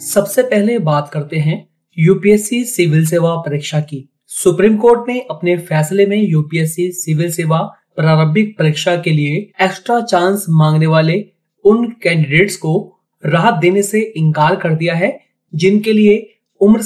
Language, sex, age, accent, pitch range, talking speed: Hindi, male, 30-49, native, 160-205 Hz, 140 wpm